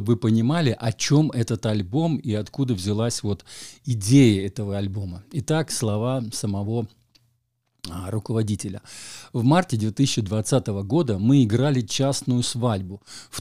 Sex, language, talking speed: male, Russian, 115 wpm